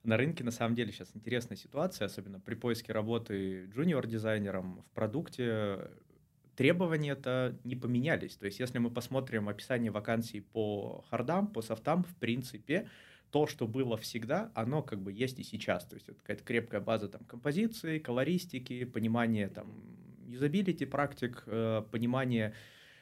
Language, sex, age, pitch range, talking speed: Russian, male, 20-39, 105-130 Hz, 150 wpm